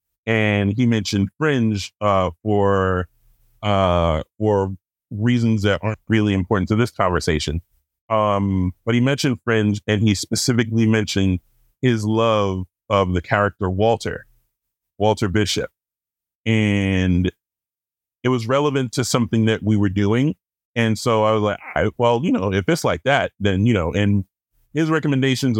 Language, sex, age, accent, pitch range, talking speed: English, male, 30-49, American, 100-120 Hz, 145 wpm